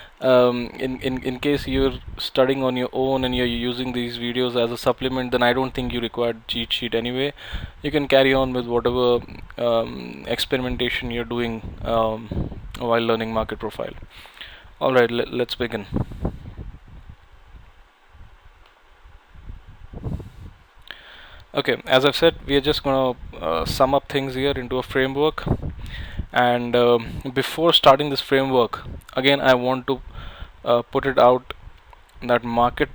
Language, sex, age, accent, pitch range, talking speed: Tamil, male, 10-29, native, 115-130 Hz, 145 wpm